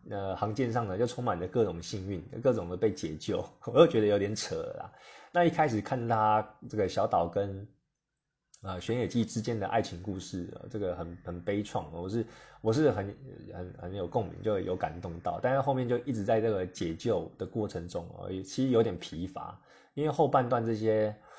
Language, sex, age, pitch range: Chinese, male, 20-39, 95-130 Hz